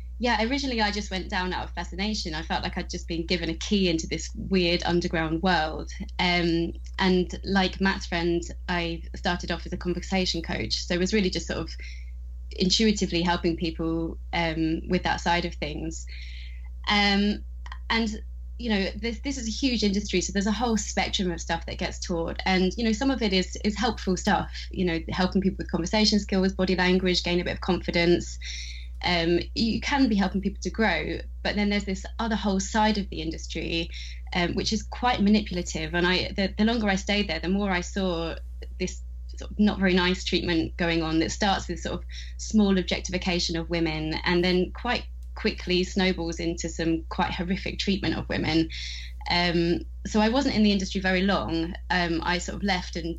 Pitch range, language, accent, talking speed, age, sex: 165-195 Hz, English, British, 195 wpm, 20-39, female